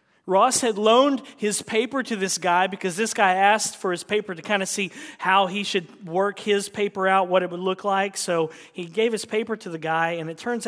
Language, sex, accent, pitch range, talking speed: English, male, American, 165-220 Hz, 235 wpm